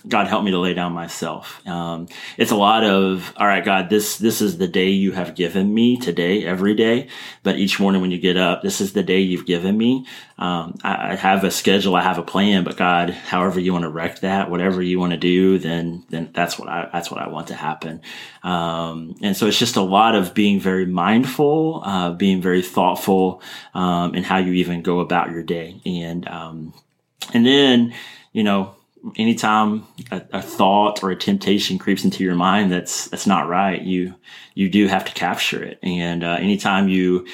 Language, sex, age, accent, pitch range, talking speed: English, male, 30-49, American, 90-100 Hz, 210 wpm